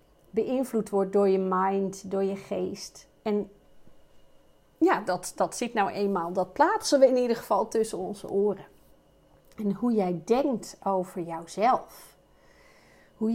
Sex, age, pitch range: female, 40-59, 190-245 Hz